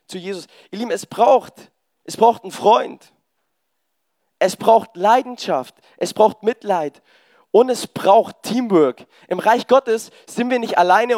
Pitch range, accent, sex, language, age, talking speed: 180-245 Hz, German, male, German, 20-39, 145 wpm